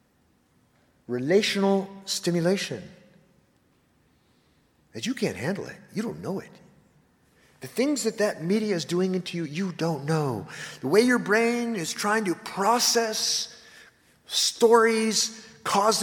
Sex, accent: male, American